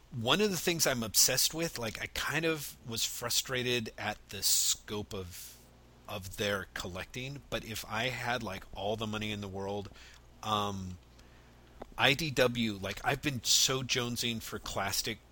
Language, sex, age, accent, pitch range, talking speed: English, male, 40-59, American, 95-120 Hz, 155 wpm